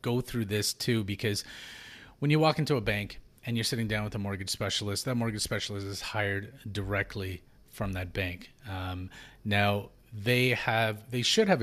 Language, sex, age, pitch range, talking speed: English, male, 30-49, 100-115 Hz, 180 wpm